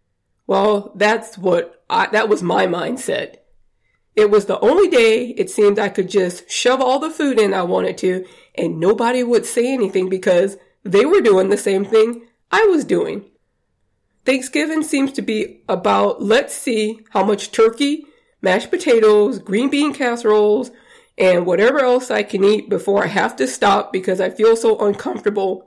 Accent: American